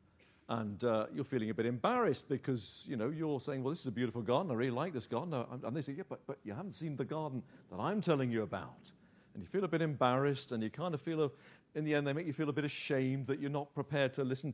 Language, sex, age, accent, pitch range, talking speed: English, male, 50-69, British, 120-150 Hz, 270 wpm